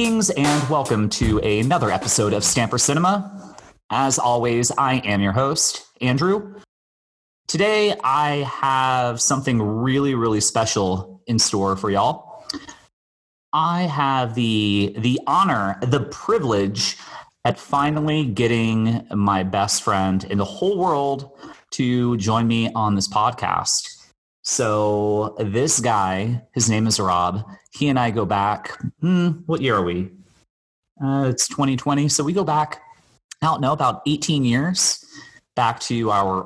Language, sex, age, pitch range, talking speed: English, male, 30-49, 100-135 Hz, 135 wpm